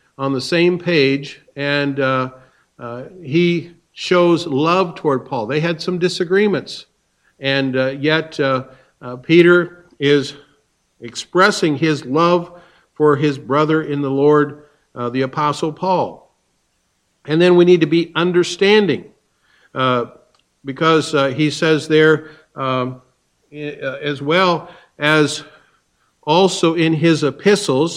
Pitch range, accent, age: 140-170 Hz, American, 50-69